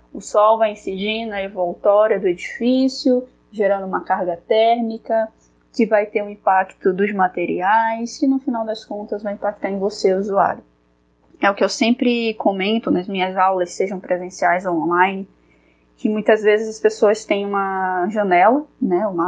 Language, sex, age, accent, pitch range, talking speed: Portuguese, female, 10-29, Brazilian, 185-230 Hz, 160 wpm